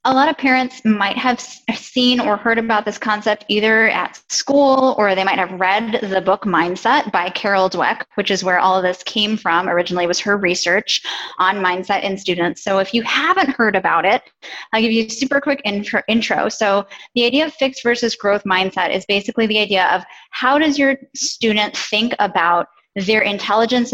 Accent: American